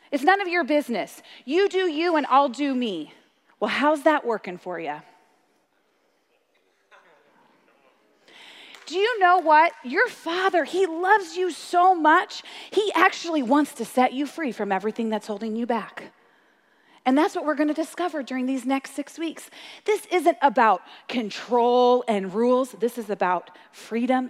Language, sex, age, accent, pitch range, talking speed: English, female, 30-49, American, 235-335 Hz, 155 wpm